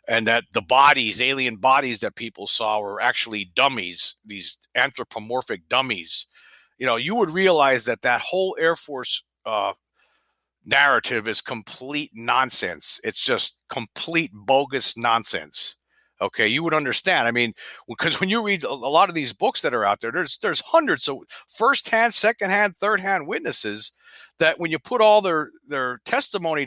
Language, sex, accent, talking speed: English, male, American, 155 wpm